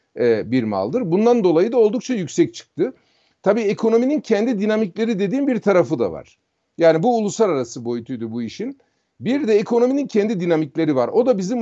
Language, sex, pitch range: Turkish, male, 170-230 Hz